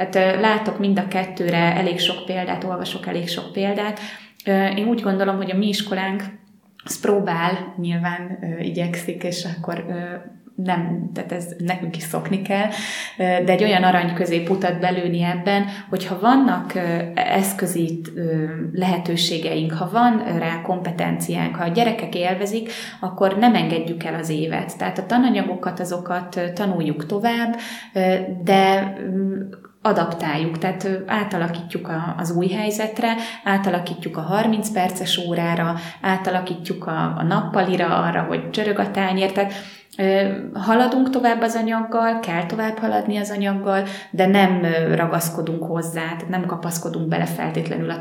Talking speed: 125 wpm